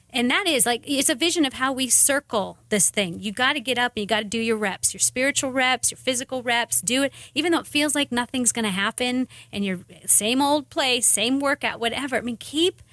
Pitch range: 210-270 Hz